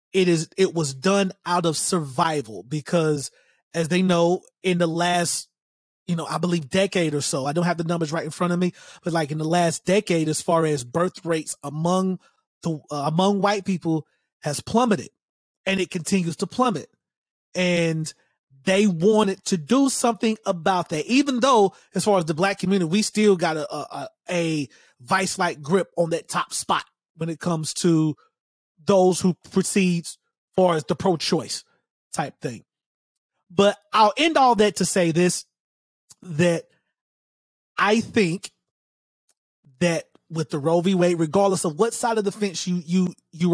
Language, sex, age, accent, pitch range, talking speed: English, male, 30-49, American, 160-195 Hz, 170 wpm